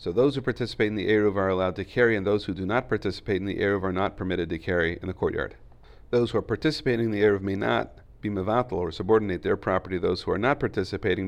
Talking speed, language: 260 wpm, English